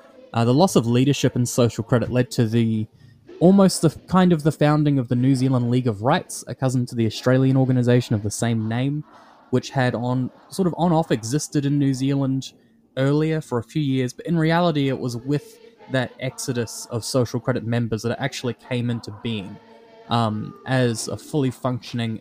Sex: male